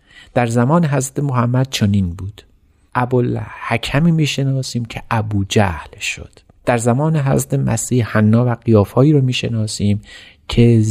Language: Persian